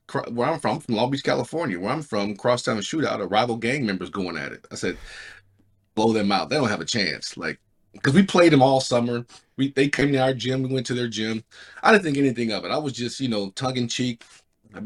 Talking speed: 250 wpm